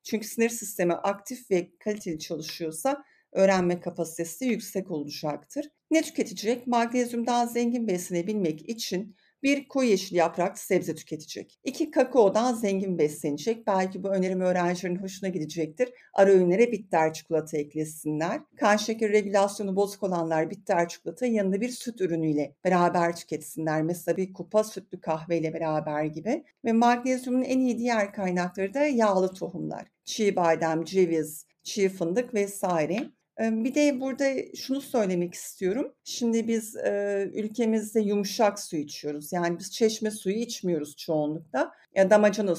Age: 50-69